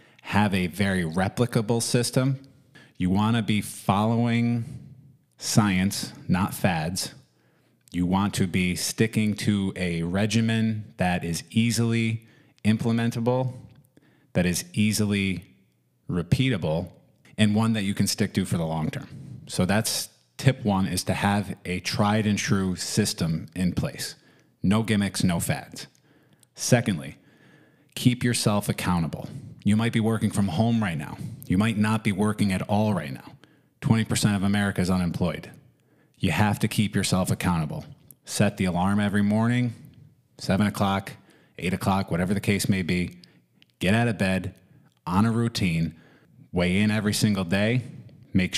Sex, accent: male, American